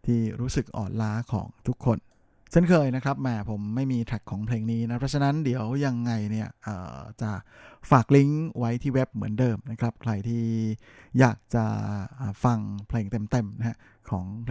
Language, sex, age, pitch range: Thai, male, 20-39, 110-130 Hz